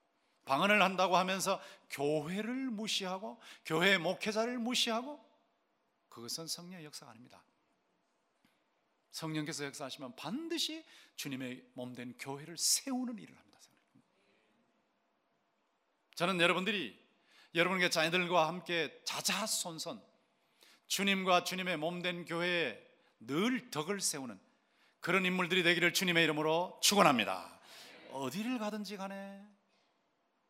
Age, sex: 40-59, male